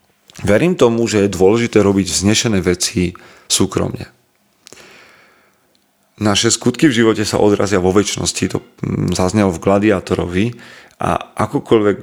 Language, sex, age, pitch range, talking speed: Slovak, male, 40-59, 90-105 Hz, 115 wpm